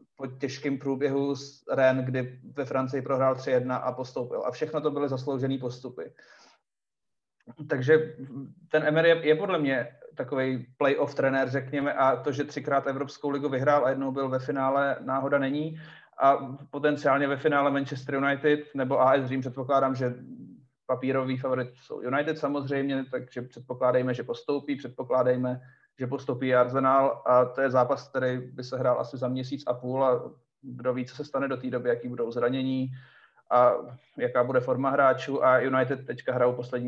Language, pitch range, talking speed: Czech, 130-145 Hz, 165 wpm